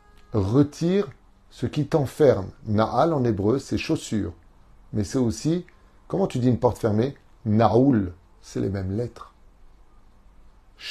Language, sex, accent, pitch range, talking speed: French, male, French, 105-135 Hz, 160 wpm